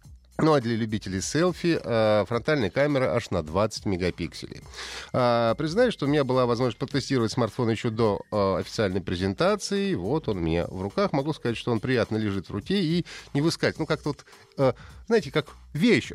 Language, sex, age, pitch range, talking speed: Russian, male, 30-49, 105-155 Hz, 185 wpm